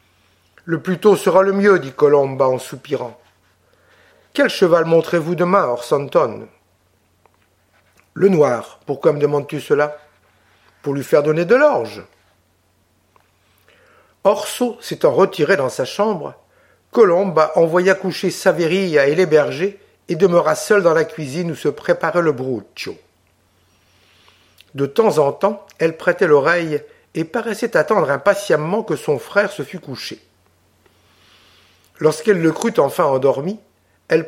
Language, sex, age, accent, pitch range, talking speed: French, male, 60-79, French, 115-190 Hz, 130 wpm